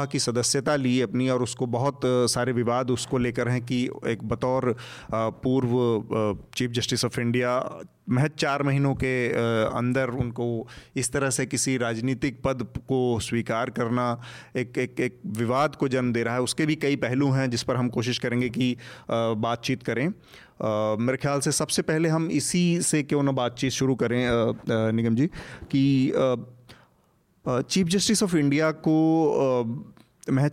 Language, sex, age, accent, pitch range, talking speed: Hindi, male, 30-49, native, 115-140 Hz, 155 wpm